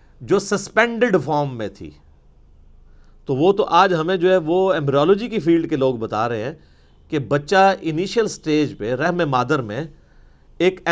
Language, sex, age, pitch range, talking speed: Urdu, male, 40-59, 120-185 Hz, 165 wpm